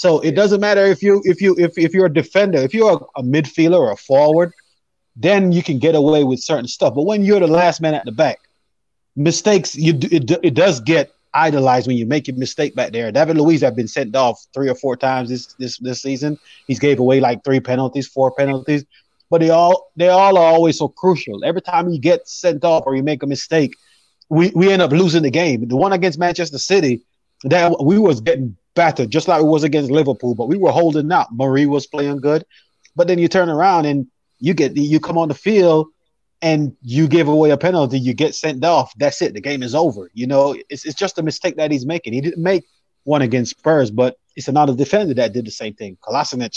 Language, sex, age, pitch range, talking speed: English, male, 30-49, 135-175 Hz, 235 wpm